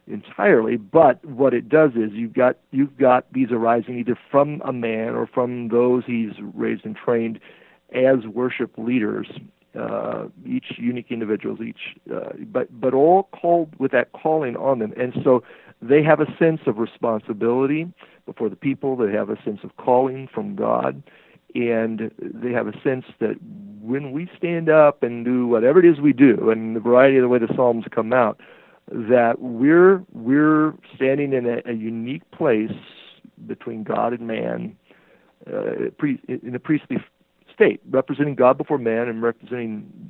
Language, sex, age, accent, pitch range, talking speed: English, male, 50-69, American, 115-150 Hz, 170 wpm